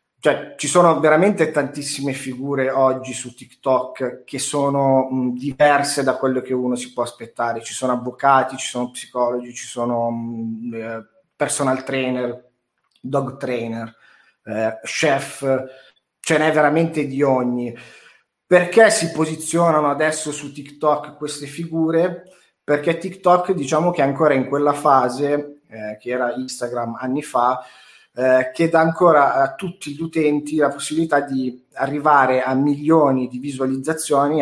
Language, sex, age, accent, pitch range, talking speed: Italian, male, 30-49, native, 125-150 Hz, 135 wpm